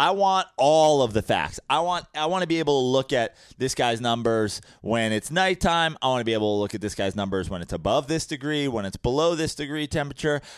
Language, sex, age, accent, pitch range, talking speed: English, male, 30-49, American, 110-155 Hz, 250 wpm